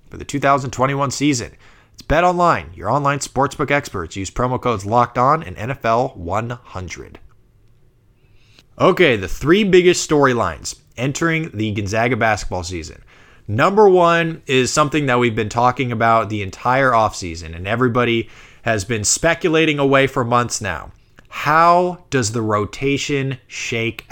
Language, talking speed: English, 135 wpm